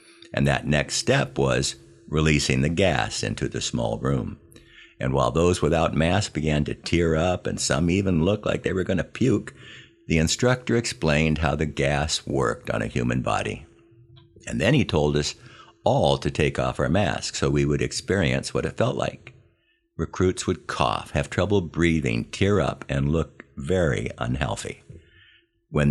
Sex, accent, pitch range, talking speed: male, American, 70-90 Hz, 170 wpm